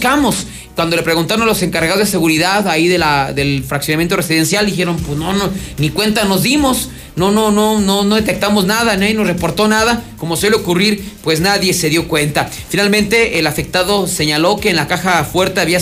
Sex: male